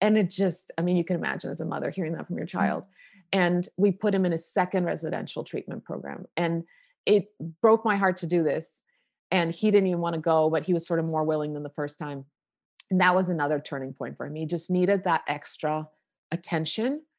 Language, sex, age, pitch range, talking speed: English, female, 30-49, 155-185 Hz, 230 wpm